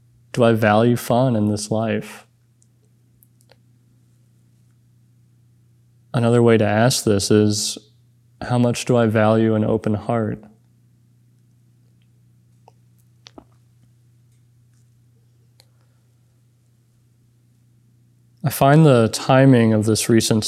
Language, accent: English, American